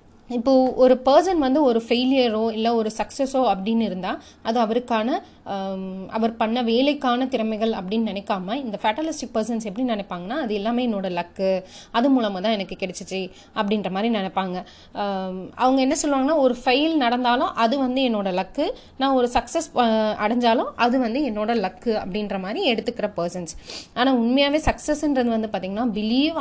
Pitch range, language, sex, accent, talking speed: 205-255 Hz, Tamil, female, native, 145 wpm